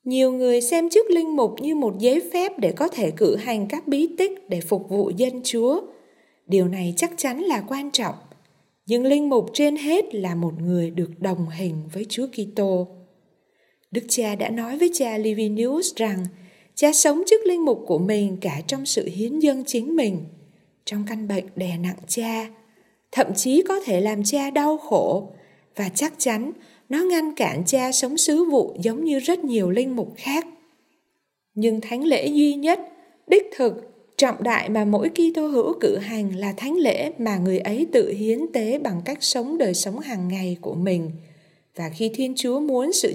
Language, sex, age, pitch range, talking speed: Vietnamese, female, 20-39, 200-300 Hz, 190 wpm